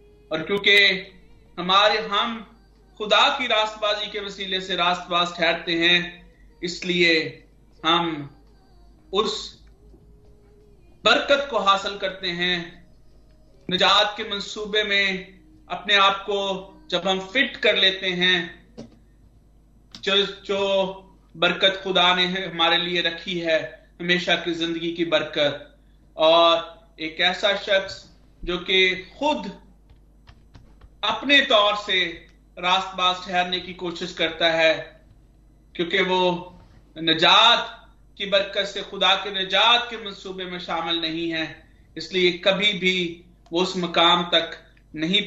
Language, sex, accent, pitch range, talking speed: Hindi, male, native, 150-190 Hz, 115 wpm